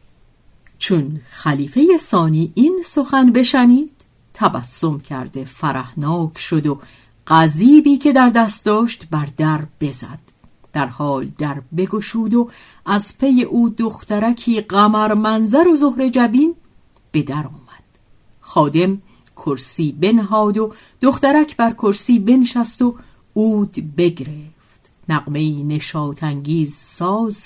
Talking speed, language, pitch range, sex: 110 wpm, Persian, 150-220 Hz, female